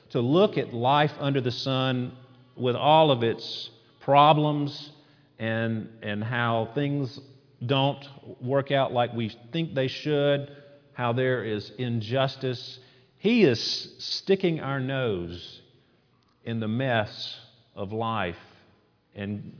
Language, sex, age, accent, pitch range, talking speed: English, male, 50-69, American, 100-140 Hz, 120 wpm